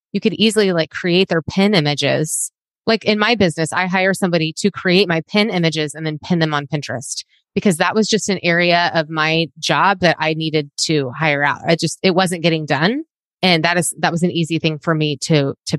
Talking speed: 225 wpm